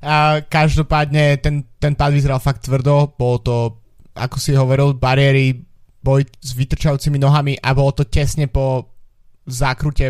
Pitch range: 120-140 Hz